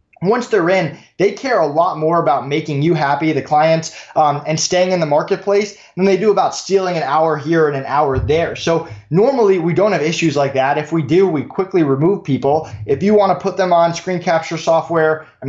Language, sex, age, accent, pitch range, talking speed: English, male, 20-39, American, 145-175 Hz, 225 wpm